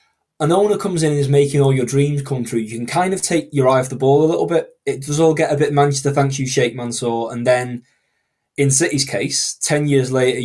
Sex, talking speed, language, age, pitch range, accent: male, 255 wpm, English, 20-39, 125-145 Hz, British